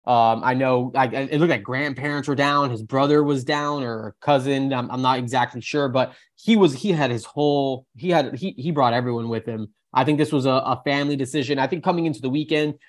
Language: English